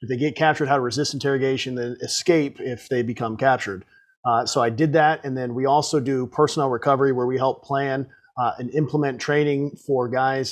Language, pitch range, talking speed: English, 125-150 Hz, 205 wpm